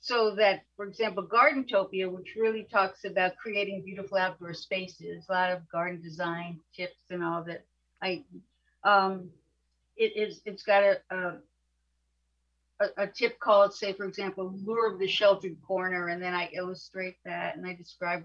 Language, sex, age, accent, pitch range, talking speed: English, female, 50-69, American, 175-225 Hz, 165 wpm